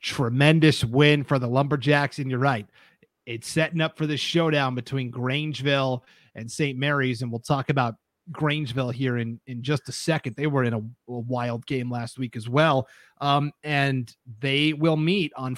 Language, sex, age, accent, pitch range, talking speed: English, male, 30-49, American, 130-155 Hz, 180 wpm